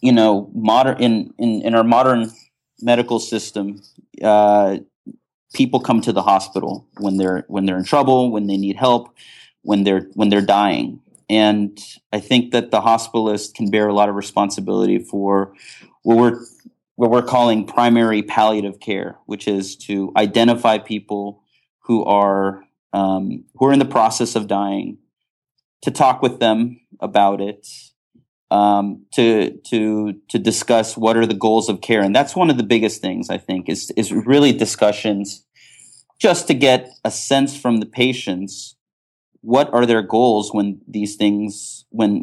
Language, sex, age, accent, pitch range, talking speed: English, male, 30-49, American, 100-120 Hz, 160 wpm